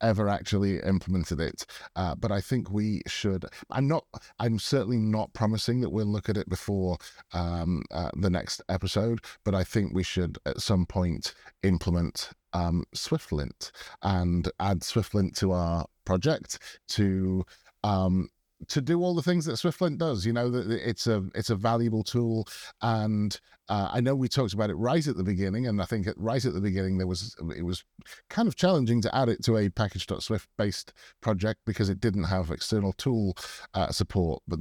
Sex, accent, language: male, British, English